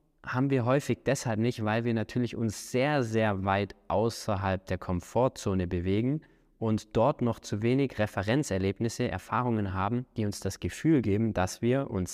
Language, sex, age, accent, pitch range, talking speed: German, male, 20-39, German, 100-130 Hz, 160 wpm